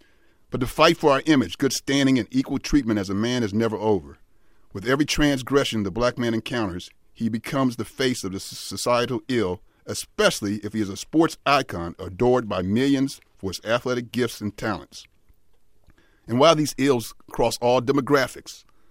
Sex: male